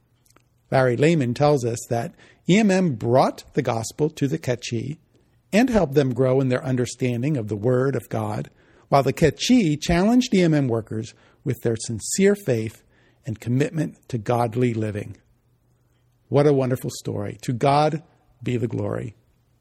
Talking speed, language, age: 145 wpm, English, 50-69